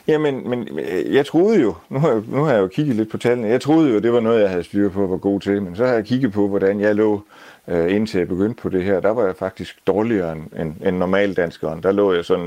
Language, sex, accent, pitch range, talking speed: Danish, male, native, 85-100 Hz, 275 wpm